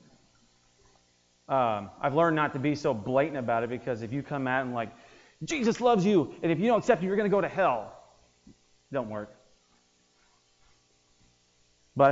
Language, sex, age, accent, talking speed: English, male, 30-49, American, 185 wpm